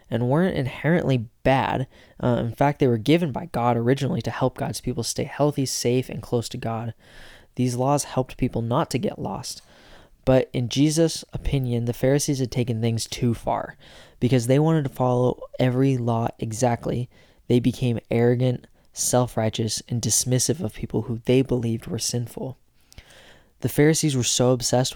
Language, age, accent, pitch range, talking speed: English, 20-39, American, 115-130 Hz, 165 wpm